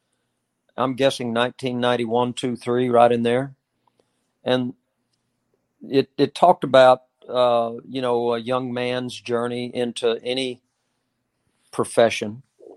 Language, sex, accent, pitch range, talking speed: English, male, American, 115-130 Hz, 110 wpm